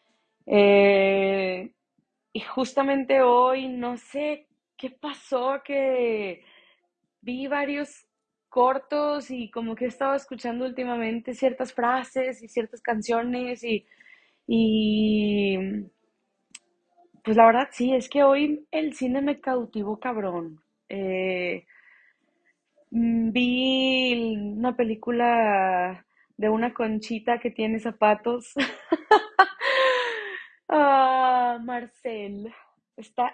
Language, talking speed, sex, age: Spanish, 90 wpm, female, 20-39